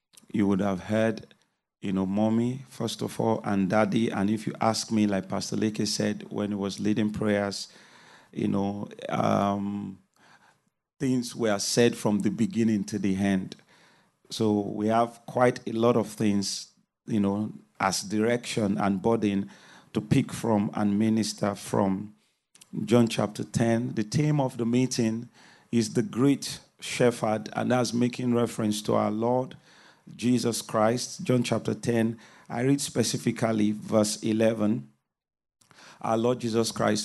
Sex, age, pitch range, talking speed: male, 40-59, 105-120 Hz, 145 wpm